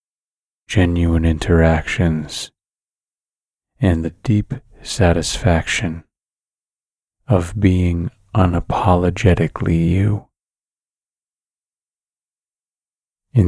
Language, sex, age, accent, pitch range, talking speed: English, male, 30-49, American, 85-105 Hz, 50 wpm